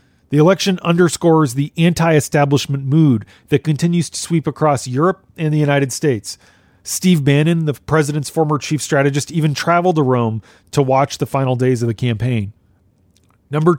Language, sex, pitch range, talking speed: English, male, 125-160 Hz, 155 wpm